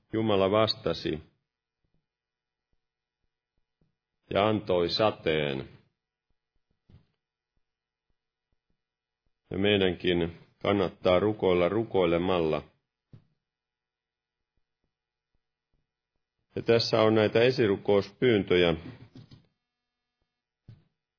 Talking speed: 40 wpm